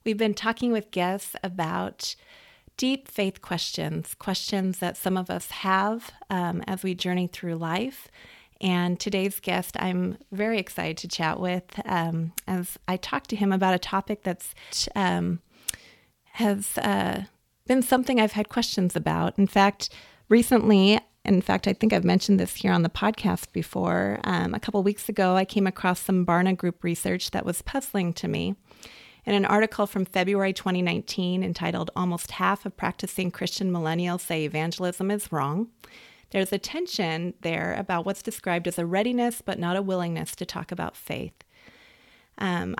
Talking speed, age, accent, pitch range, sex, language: 165 wpm, 30-49, American, 175-205 Hz, female, English